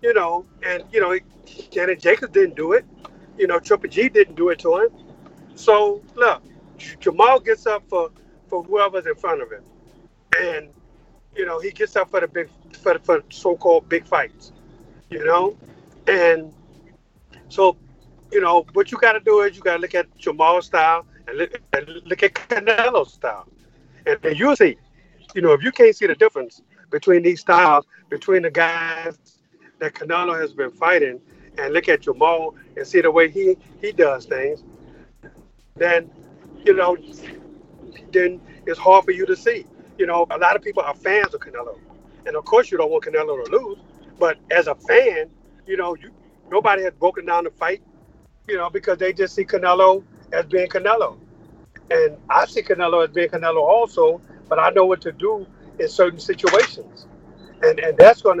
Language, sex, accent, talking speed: English, male, American, 185 wpm